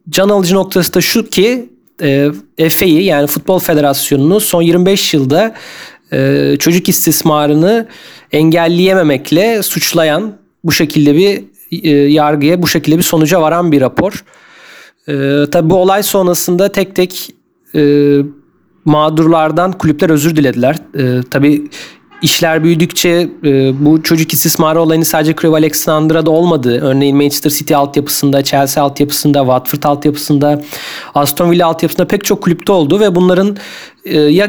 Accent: native